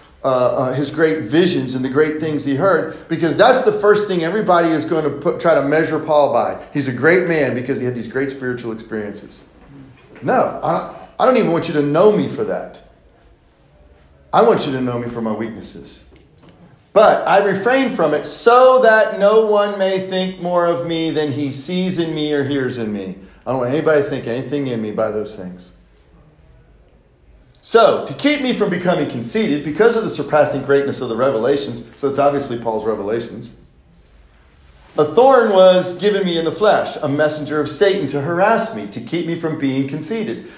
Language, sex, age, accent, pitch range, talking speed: English, male, 40-59, American, 130-175 Hz, 195 wpm